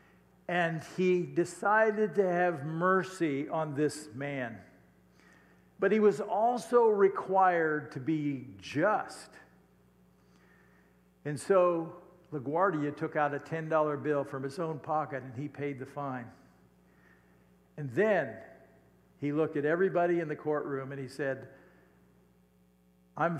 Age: 50-69